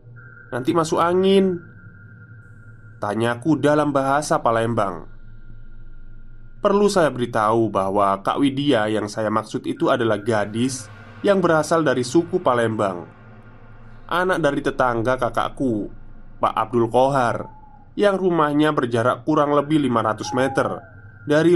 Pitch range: 110-140 Hz